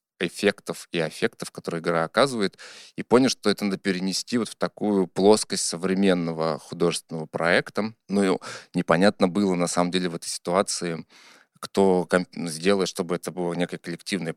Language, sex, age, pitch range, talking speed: Russian, male, 20-39, 85-95 Hz, 155 wpm